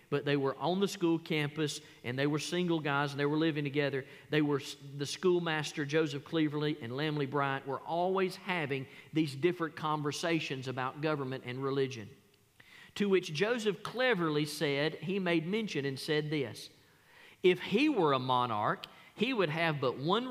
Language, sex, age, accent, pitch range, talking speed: English, male, 40-59, American, 135-180 Hz, 170 wpm